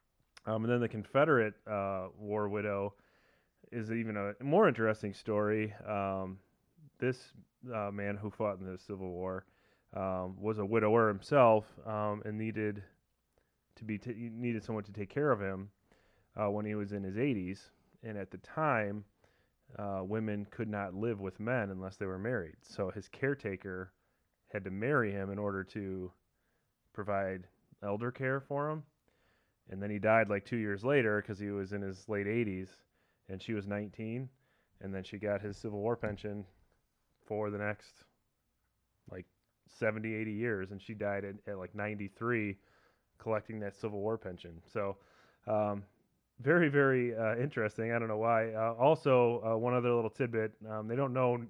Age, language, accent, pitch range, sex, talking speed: 30-49, English, American, 100-120 Hz, male, 170 wpm